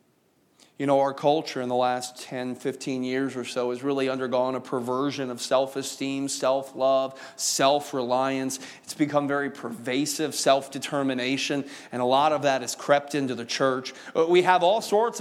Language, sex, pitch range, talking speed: English, male, 135-185 Hz, 160 wpm